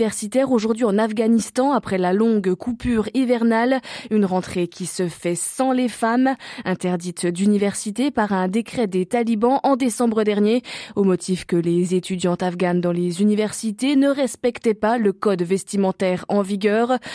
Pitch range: 185-235 Hz